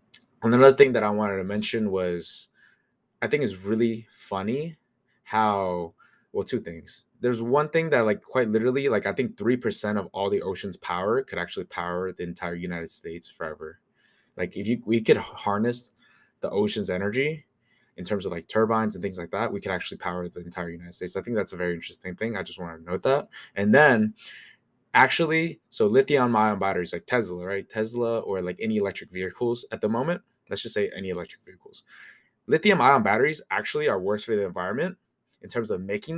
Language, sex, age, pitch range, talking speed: English, male, 20-39, 90-120 Hz, 195 wpm